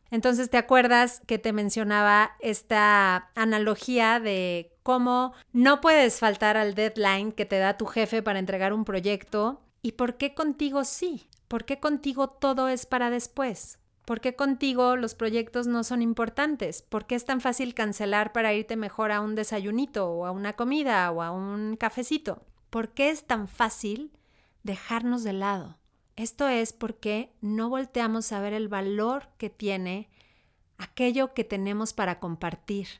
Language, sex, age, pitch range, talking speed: Spanish, female, 30-49, 200-245 Hz, 160 wpm